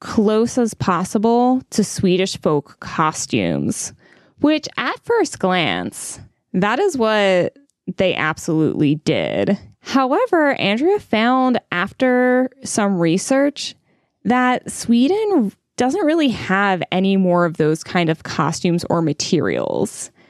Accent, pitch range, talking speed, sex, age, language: American, 185-265 Hz, 110 wpm, female, 10-29, English